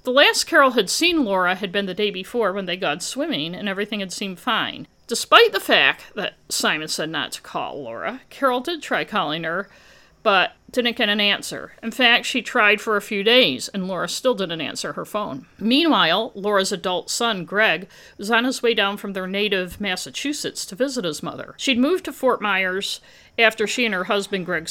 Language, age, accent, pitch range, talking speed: English, 50-69, American, 185-250 Hz, 205 wpm